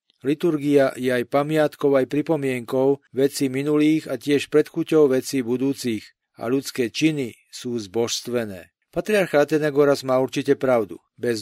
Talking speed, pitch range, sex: 125 wpm, 130-150 Hz, male